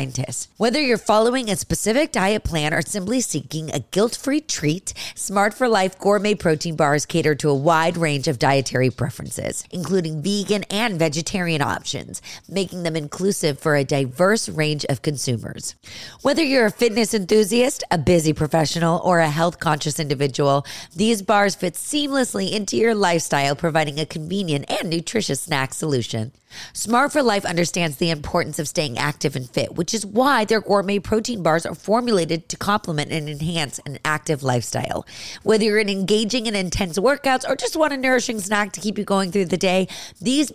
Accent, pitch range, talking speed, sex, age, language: American, 155-215 Hz, 170 wpm, female, 30-49, English